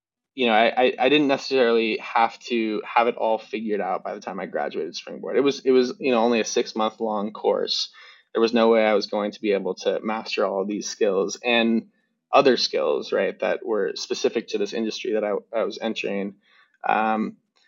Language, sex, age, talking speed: English, male, 20-39, 210 wpm